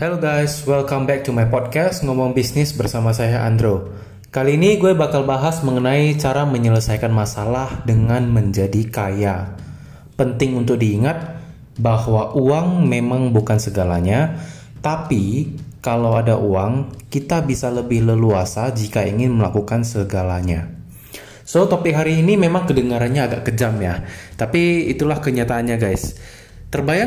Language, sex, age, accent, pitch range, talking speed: Indonesian, male, 20-39, native, 110-140 Hz, 130 wpm